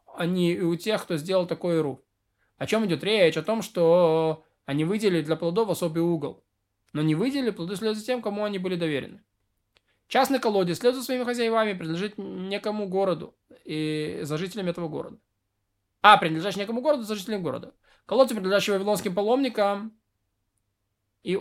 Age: 20-39